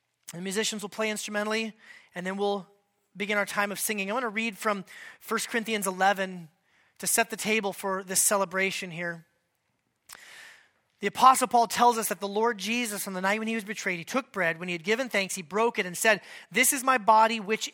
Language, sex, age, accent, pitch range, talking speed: English, male, 30-49, American, 200-250 Hz, 215 wpm